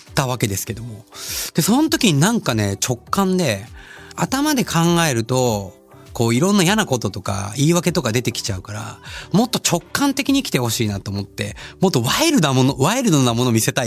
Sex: male